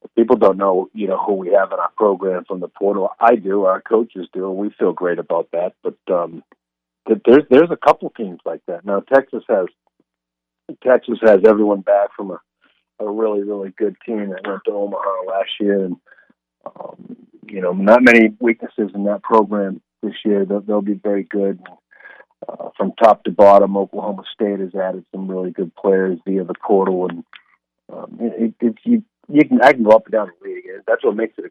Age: 40-59